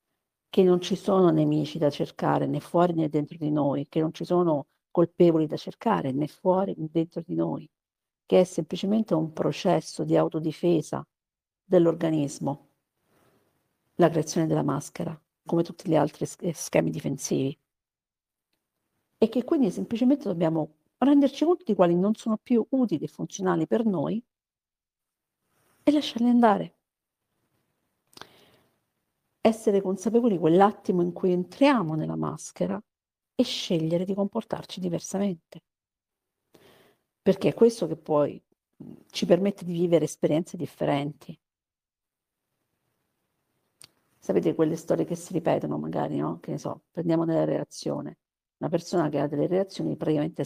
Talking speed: 130 wpm